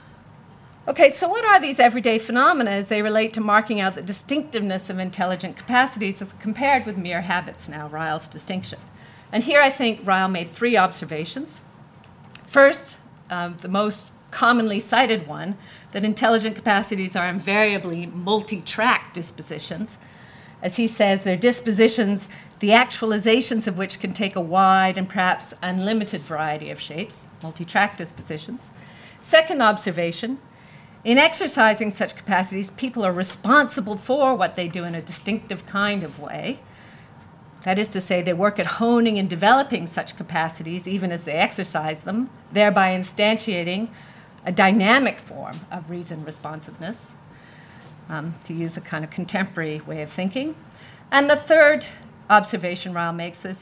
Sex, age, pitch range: female, 40-59, 175-225 Hz